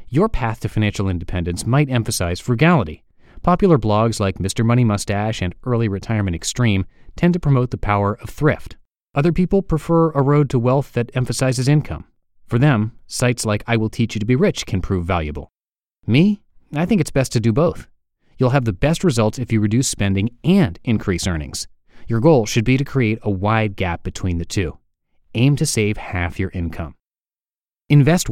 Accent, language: American, English